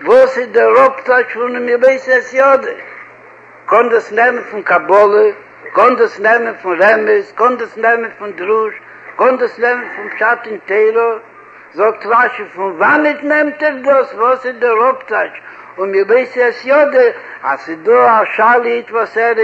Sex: male